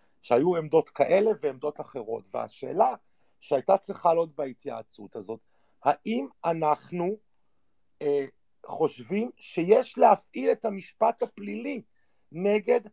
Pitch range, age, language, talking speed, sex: 160-230 Hz, 50-69, Hebrew, 95 wpm, male